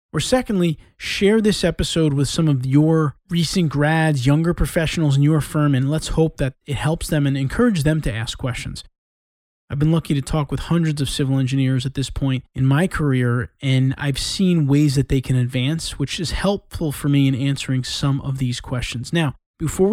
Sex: male